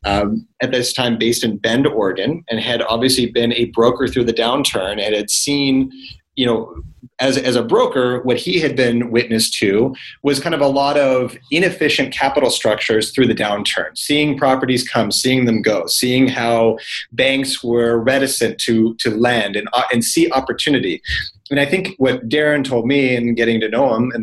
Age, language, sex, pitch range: 30-49, English, male, 115-135 Hz